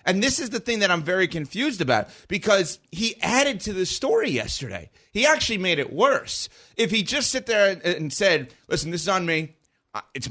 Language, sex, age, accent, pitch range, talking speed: English, male, 30-49, American, 135-185 Hz, 205 wpm